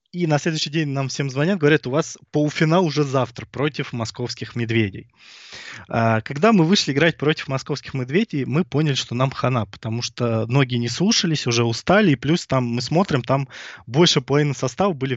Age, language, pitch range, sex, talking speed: 20-39, Russian, 115-145 Hz, male, 180 wpm